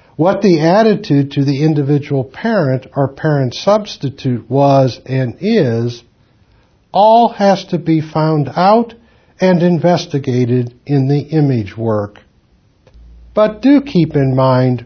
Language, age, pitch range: English, 60-79, 130-195 Hz